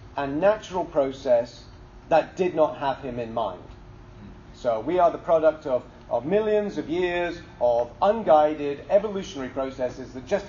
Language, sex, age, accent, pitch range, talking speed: English, male, 40-59, British, 120-180 Hz, 150 wpm